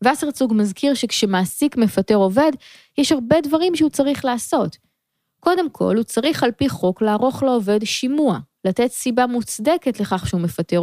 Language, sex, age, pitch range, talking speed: Hebrew, female, 20-39, 190-255 Hz, 150 wpm